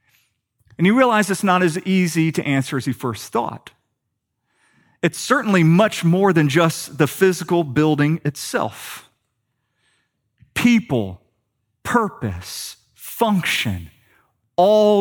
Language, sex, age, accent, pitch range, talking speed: English, male, 40-59, American, 115-160 Hz, 110 wpm